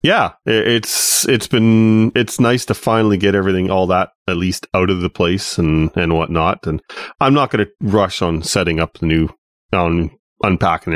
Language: English